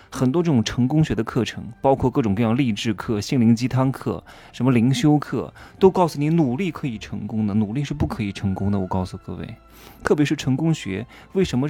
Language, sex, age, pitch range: Chinese, male, 20-39, 100-150 Hz